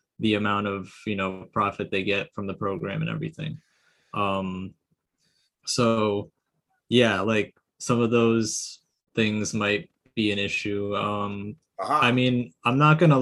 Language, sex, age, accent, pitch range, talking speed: Finnish, male, 20-39, American, 110-130 Hz, 140 wpm